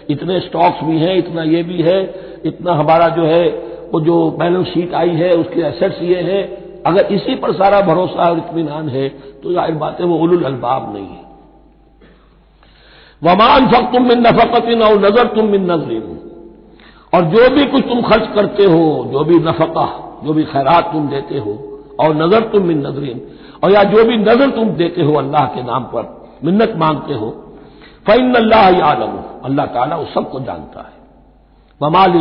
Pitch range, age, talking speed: 160-225 Hz, 60-79, 165 wpm